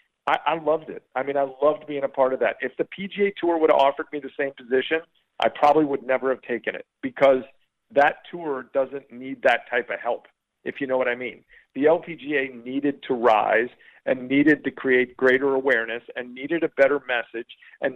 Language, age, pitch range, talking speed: English, 50-69, 125-160 Hz, 205 wpm